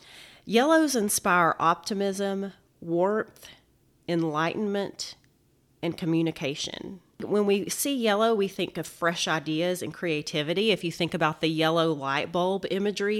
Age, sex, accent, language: 30-49, female, American, English